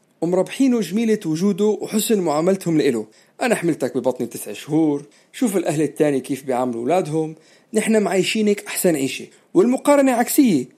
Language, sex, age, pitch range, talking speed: Arabic, male, 50-69, 155-220 Hz, 130 wpm